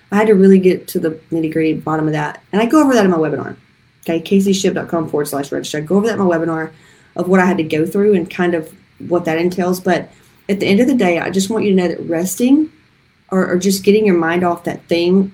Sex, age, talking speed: female, 30-49, 265 wpm